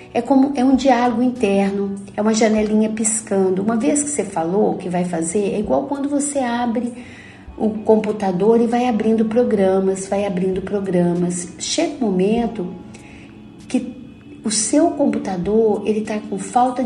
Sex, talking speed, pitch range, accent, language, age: female, 150 wpm, 190-250 Hz, Brazilian, Portuguese, 50-69